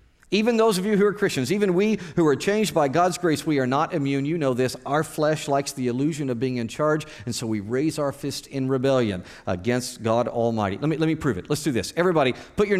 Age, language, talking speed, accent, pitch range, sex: 50-69, English, 255 wpm, American, 125-180 Hz, male